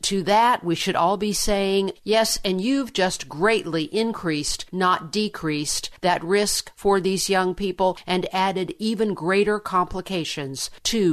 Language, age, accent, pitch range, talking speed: English, 50-69, American, 165-210 Hz, 145 wpm